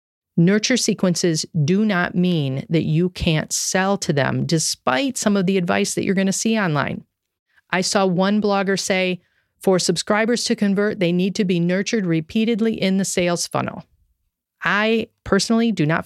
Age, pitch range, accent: 40-59, 160-205 Hz, American